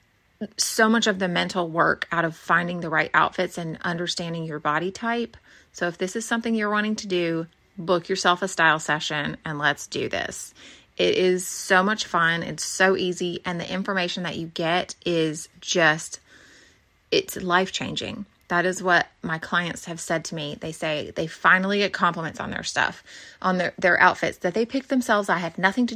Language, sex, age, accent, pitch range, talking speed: English, female, 30-49, American, 175-200 Hz, 190 wpm